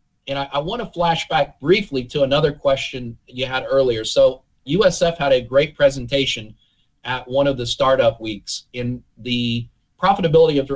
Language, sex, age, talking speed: English, male, 40-59, 165 wpm